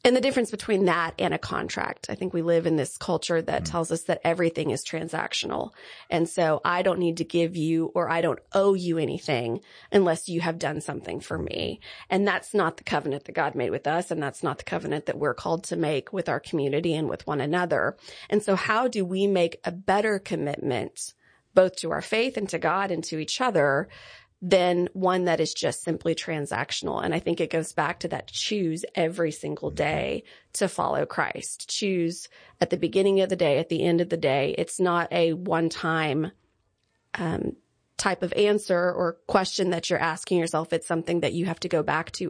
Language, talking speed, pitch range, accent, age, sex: English, 210 wpm, 165-195 Hz, American, 30-49, female